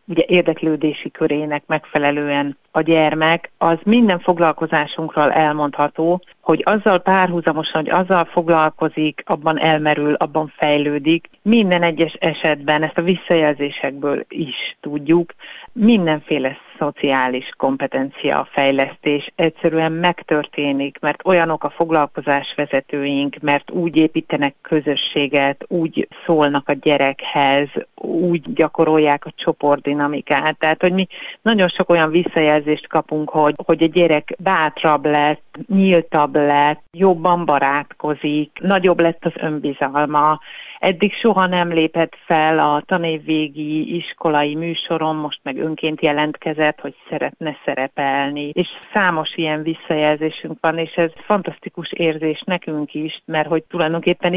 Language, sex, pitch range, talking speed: Hungarian, female, 145-170 Hz, 115 wpm